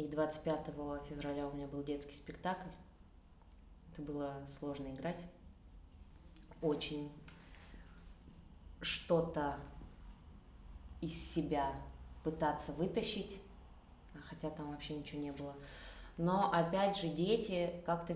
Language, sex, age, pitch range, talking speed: Russian, female, 20-39, 140-165 Hz, 95 wpm